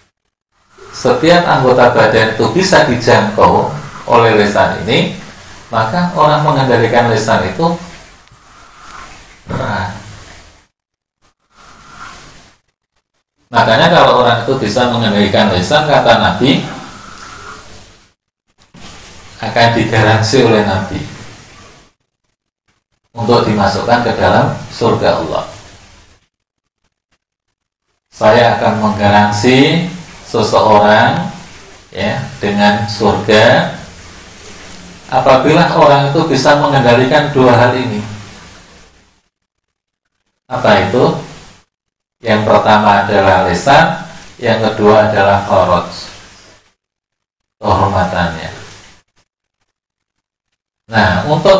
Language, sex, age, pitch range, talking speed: Indonesian, male, 40-59, 100-130 Hz, 70 wpm